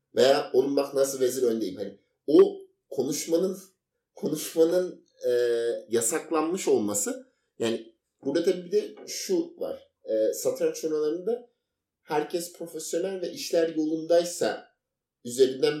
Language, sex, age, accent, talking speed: Turkish, male, 50-69, native, 110 wpm